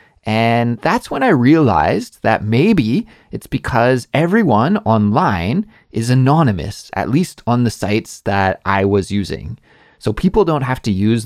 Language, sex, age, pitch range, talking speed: English, male, 30-49, 100-130 Hz, 150 wpm